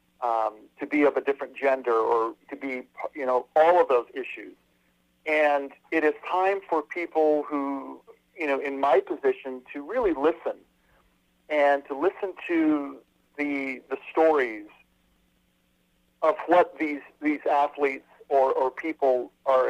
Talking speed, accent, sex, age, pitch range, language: 145 wpm, American, male, 40-59, 115-170 Hz, English